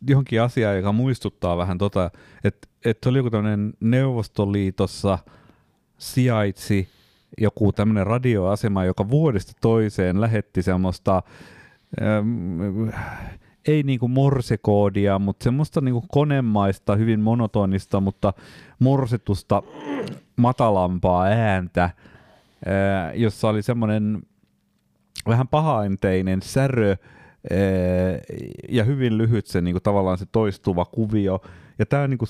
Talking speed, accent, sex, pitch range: 100 wpm, native, male, 95-120 Hz